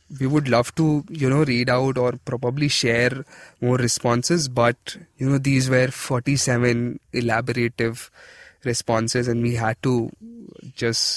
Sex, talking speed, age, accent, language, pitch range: male, 140 wpm, 20-39, Indian, English, 115-140 Hz